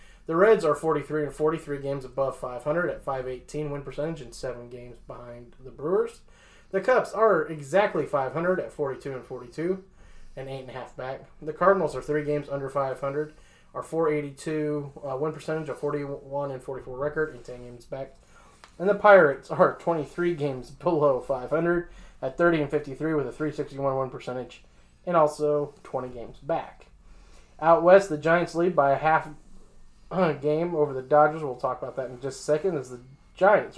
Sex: male